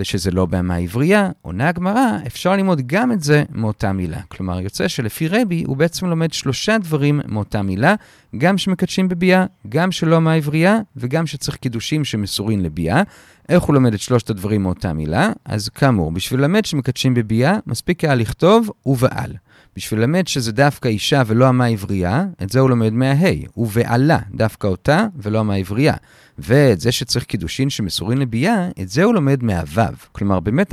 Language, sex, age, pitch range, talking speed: Hebrew, male, 40-59, 105-165 Hz, 165 wpm